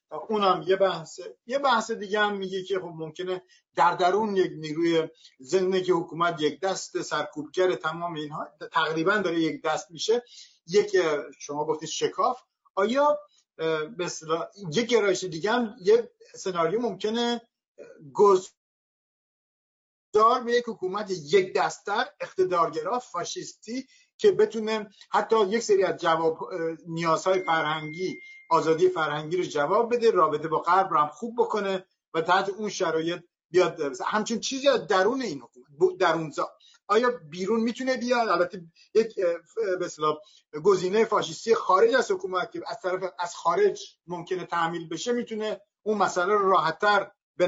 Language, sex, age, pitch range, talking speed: Persian, male, 50-69, 165-225 Hz, 130 wpm